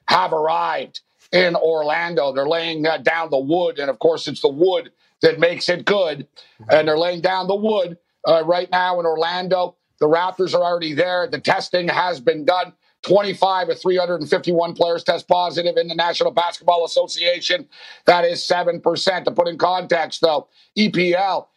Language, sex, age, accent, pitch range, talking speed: English, male, 50-69, American, 165-195 Hz, 170 wpm